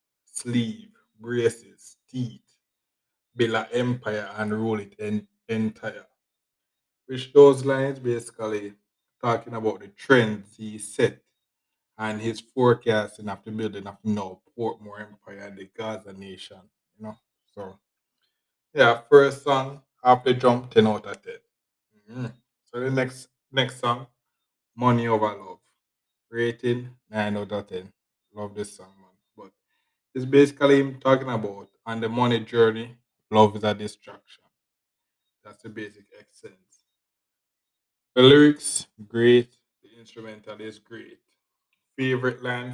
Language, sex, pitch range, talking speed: English, male, 105-130 Hz, 125 wpm